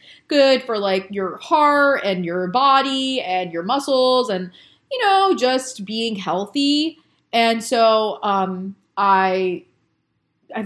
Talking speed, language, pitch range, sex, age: 125 wpm, English, 185-240 Hz, female, 30-49